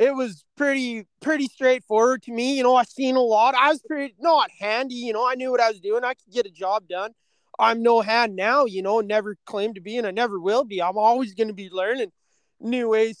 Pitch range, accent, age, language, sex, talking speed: 225-275 Hz, American, 20-39, English, male, 250 wpm